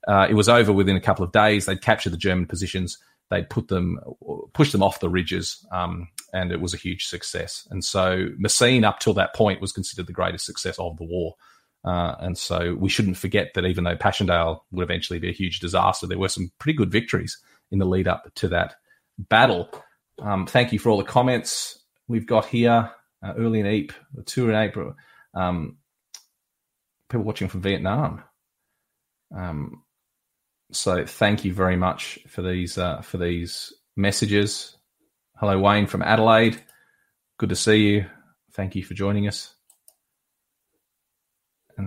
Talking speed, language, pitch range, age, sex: 175 wpm, English, 90-105 Hz, 30-49, male